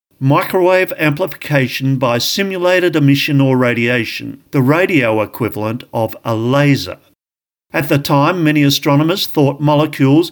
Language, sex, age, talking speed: English, male, 50-69, 115 wpm